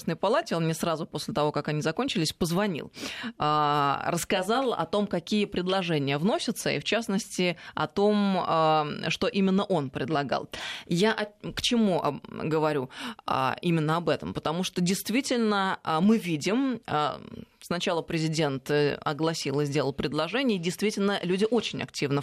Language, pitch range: Russian, 150-200 Hz